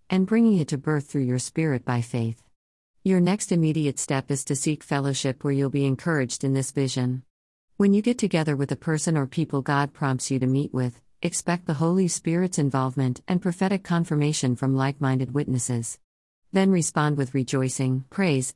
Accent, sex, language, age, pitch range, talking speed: American, female, English, 50-69, 130-170 Hz, 180 wpm